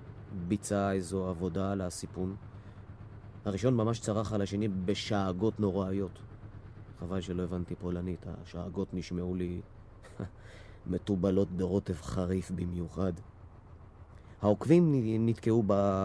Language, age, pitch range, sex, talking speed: Hebrew, 30-49, 95-110 Hz, male, 95 wpm